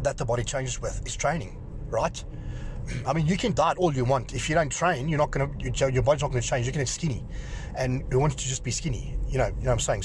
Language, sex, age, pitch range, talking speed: English, male, 30-49, 115-135 Hz, 295 wpm